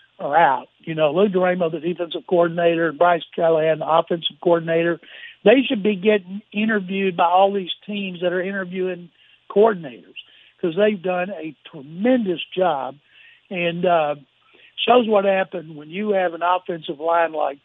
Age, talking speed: 60-79, 155 wpm